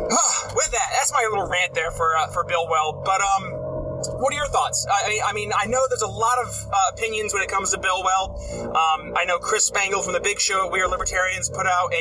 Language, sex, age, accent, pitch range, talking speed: English, male, 30-49, American, 170-235 Hz, 250 wpm